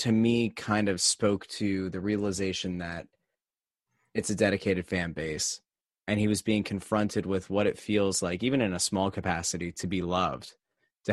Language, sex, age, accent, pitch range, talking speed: English, male, 20-39, American, 95-115 Hz, 180 wpm